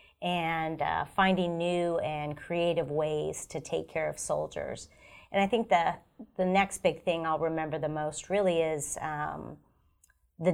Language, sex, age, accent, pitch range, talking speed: English, female, 30-49, American, 155-175 Hz, 160 wpm